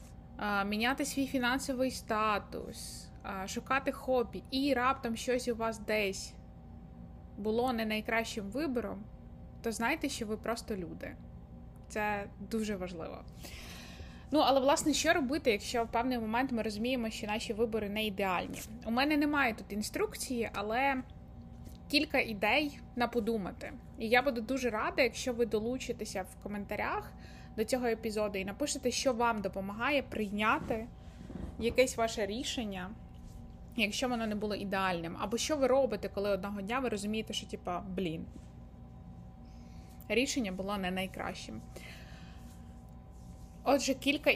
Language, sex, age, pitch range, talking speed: Ukrainian, female, 20-39, 195-255 Hz, 130 wpm